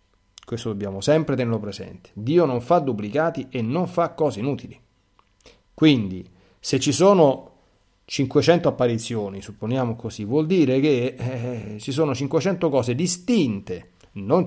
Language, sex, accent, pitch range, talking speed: Italian, male, native, 100-150 Hz, 135 wpm